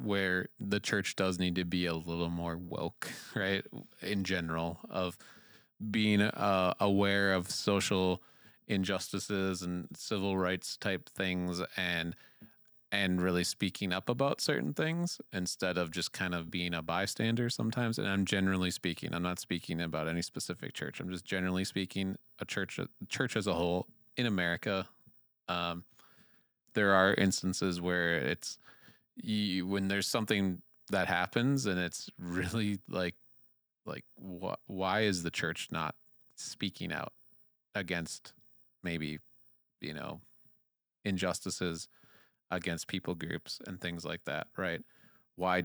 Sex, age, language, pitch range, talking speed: male, 30-49, English, 90-100 Hz, 140 wpm